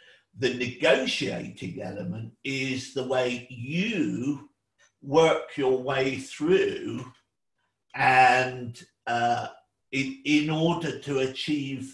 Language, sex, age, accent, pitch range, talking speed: English, male, 50-69, British, 125-165 Hz, 90 wpm